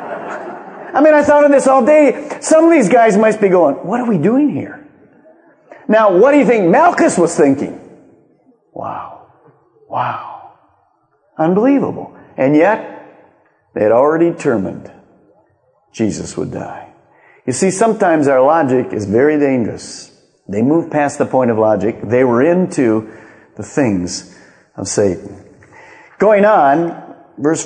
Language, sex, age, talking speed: English, male, 50-69, 140 wpm